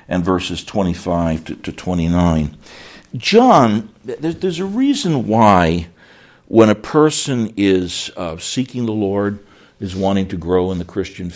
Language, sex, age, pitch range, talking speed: English, male, 60-79, 90-125 Hz, 125 wpm